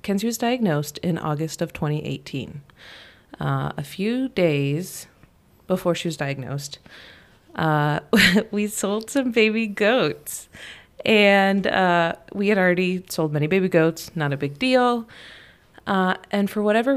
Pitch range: 150-205 Hz